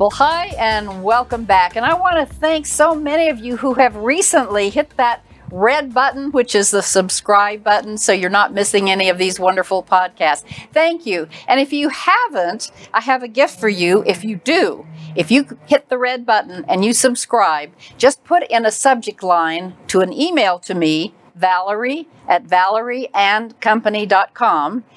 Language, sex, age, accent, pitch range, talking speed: English, female, 60-79, American, 180-245 Hz, 175 wpm